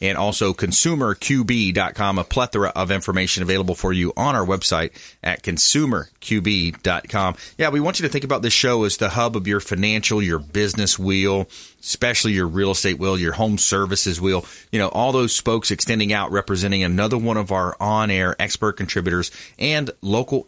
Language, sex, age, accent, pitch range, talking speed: English, male, 30-49, American, 90-110 Hz, 175 wpm